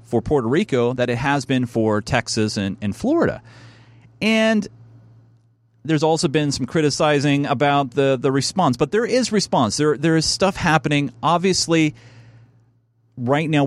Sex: male